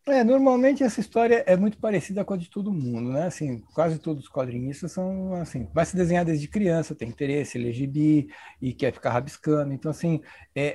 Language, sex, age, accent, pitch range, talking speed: Portuguese, male, 60-79, Brazilian, 145-185 Hz, 195 wpm